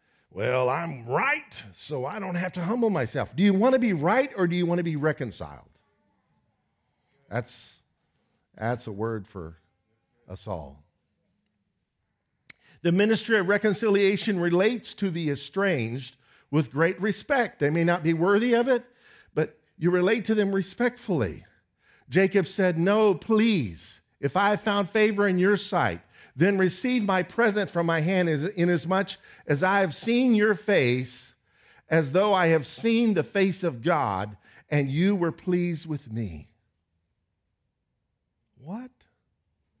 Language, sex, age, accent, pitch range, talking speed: English, male, 50-69, American, 140-205 Hz, 145 wpm